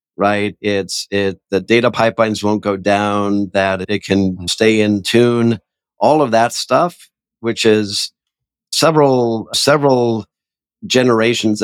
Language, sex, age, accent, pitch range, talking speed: English, male, 50-69, American, 100-115 Hz, 125 wpm